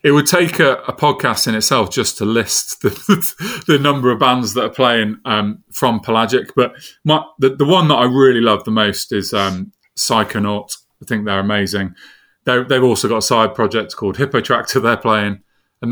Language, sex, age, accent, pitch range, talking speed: English, male, 30-49, British, 100-125 Hz, 200 wpm